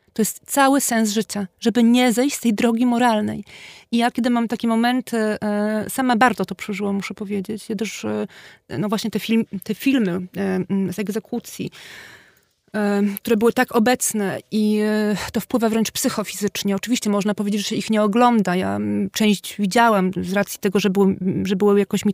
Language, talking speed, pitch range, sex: Polish, 170 wpm, 205-240 Hz, female